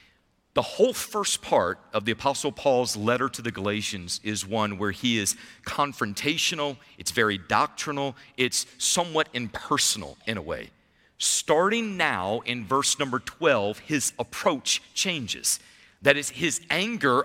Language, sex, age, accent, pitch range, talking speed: English, male, 40-59, American, 120-180 Hz, 140 wpm